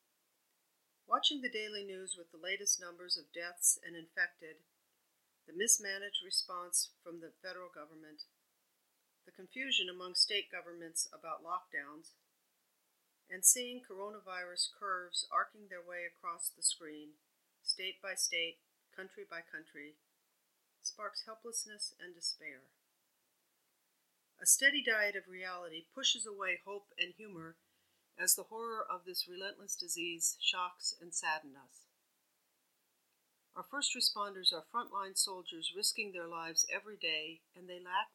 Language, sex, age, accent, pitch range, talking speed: English, female, 50-69, American, 170-205 Hz, 125 wpm